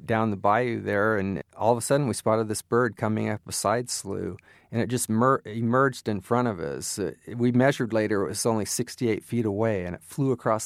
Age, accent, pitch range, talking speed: 40-59, American, 100-120 Hz, 220 wpm